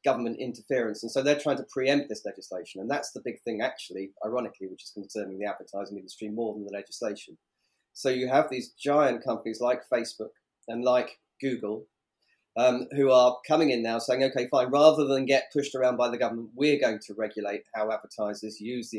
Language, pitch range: English, 105-130 Hz